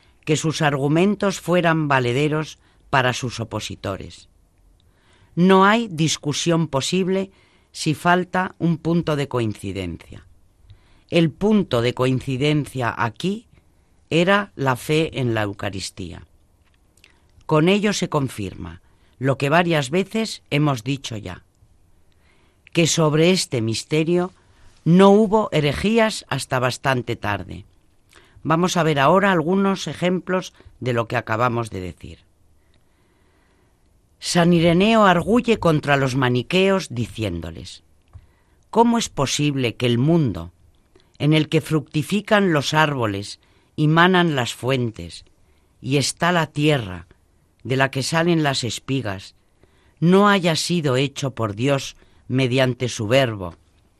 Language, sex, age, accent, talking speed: Spanish, female, 40-59, Spanish, 115 wpm